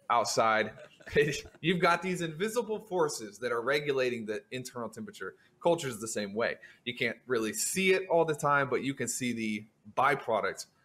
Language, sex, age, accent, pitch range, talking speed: English, male, 20-39, American, 120-170 Hz, 170 wpm